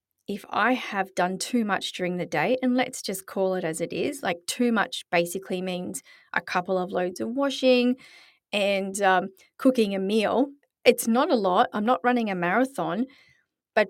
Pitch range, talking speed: 185-250 Hz, 185 wpm